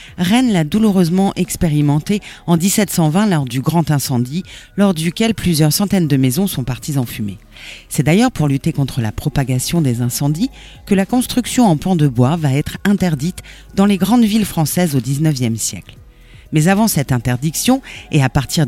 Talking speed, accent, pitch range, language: 175 wpm, French, 140-200 Hz, French